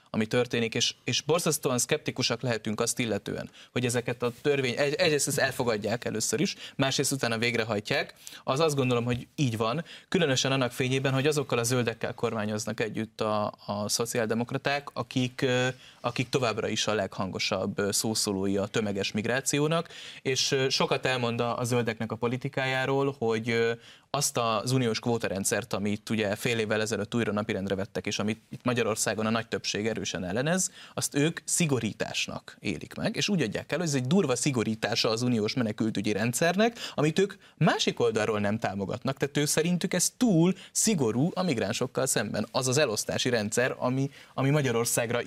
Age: 20-39